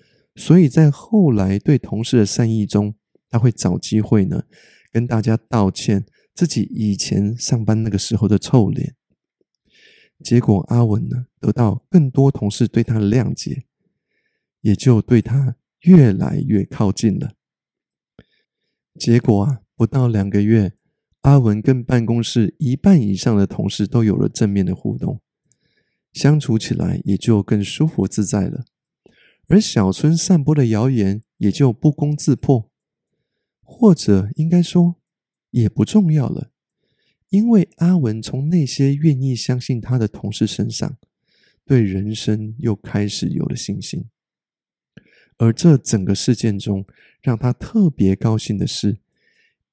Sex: male